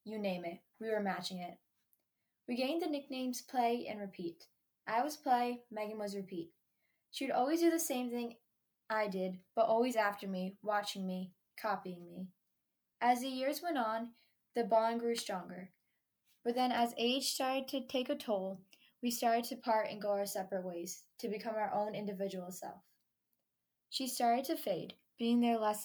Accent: American